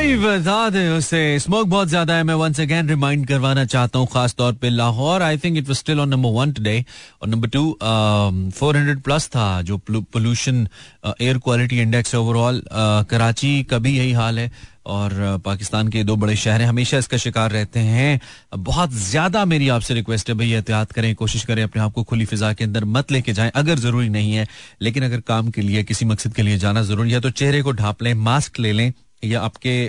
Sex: male